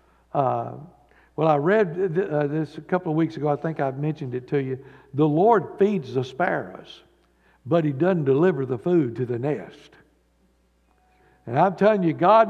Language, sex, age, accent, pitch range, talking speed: English, male, 60-79, American, 135-170 Hz, 180 wpm